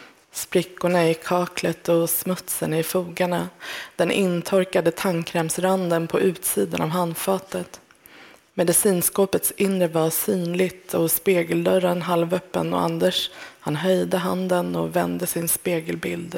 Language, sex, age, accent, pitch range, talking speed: English, female, 20-39, Swedish, 160-190 Hz, 110 wpm